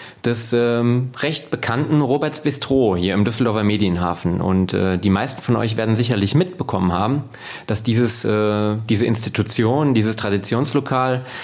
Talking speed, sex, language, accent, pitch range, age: 140 wpm, male, German, German, 105-130 Hz, 30-49